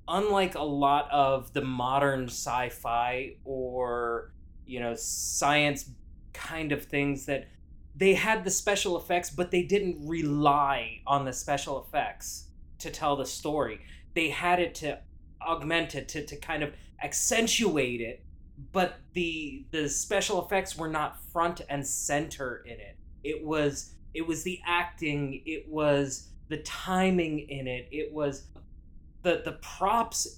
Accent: American